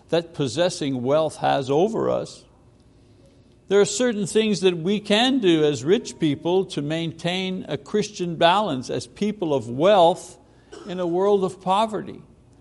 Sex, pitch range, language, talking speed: male, 140-190 Hz, English, 150 wpm